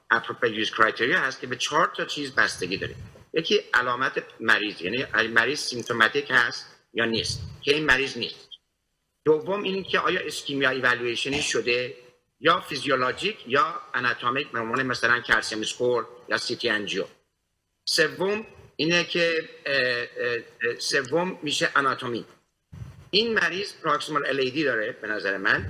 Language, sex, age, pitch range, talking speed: Persian, male, 50-69, 130-185 Hz, 130 wpm